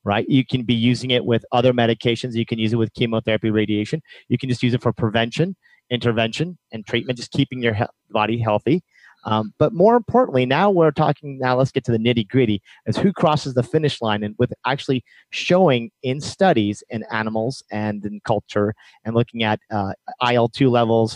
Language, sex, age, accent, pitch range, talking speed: English, male, 40-59, American, 110-140 Hz, 195 wpm